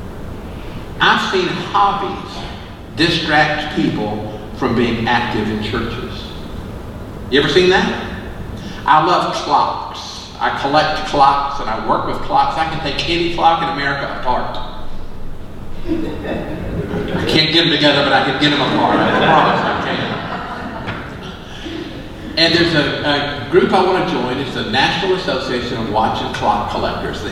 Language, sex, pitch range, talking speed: English, male, 110-160 Hz, 145 wpm